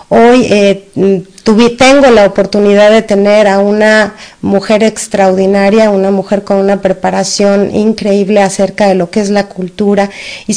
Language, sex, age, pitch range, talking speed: Spanish, female, 40-59, 195-225 Hz, 150 wpm